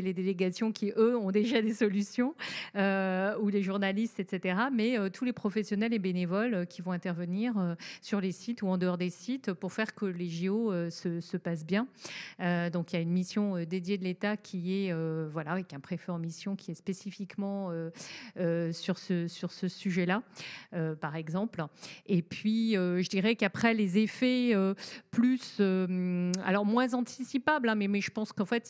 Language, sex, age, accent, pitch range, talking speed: French, female, 40-59, French, 180-220 Hz, 205 wpm